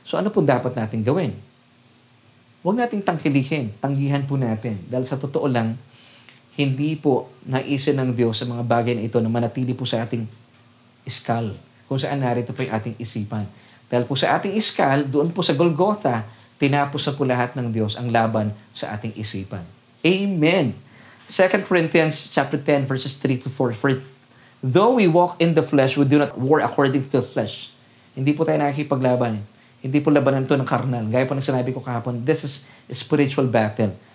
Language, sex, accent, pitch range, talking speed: Filipino, male, native, 120-150 Hz, 180 wpm